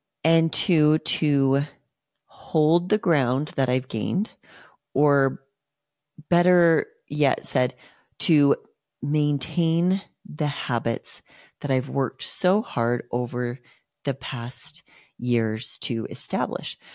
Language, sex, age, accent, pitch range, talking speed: English, female, 40-59, American, 130-165 Hz, 100 wpm